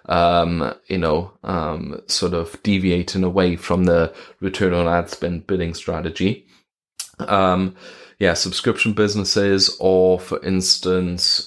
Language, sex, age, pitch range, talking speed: English, male, 20-39, 90-100 Hz, 120 wpm